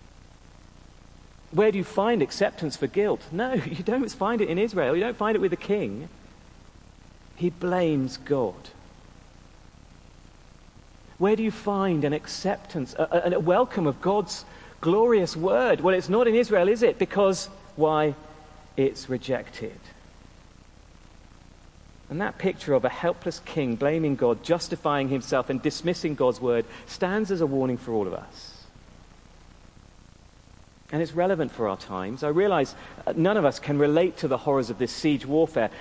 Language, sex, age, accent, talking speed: English, male, 40-59, British, 155 wpm